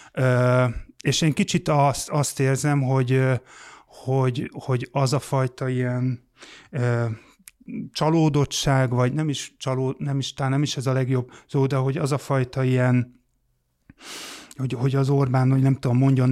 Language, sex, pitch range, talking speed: Hungarian, male, 125-140 Hz, 150 wpm